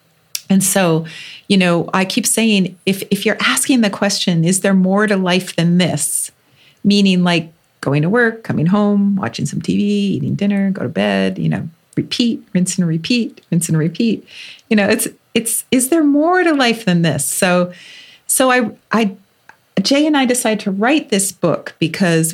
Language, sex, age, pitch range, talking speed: English, female, 40-59, 165-210 Hz, 185 wpm